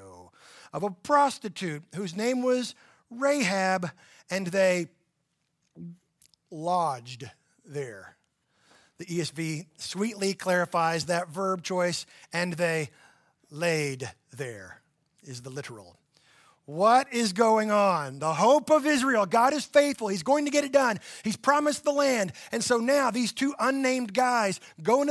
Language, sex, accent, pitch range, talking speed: English, male, American, 170-260 Hz, 130 wpm